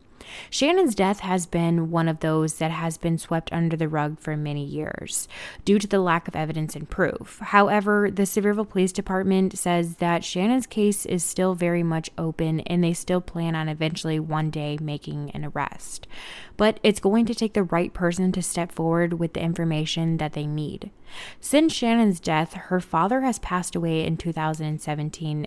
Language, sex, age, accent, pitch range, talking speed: English, female, 20-39, American, 155-185 Hz, 180 wpm